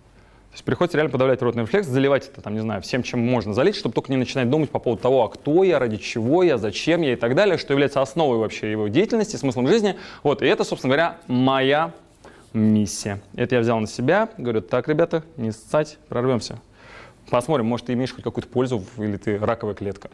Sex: male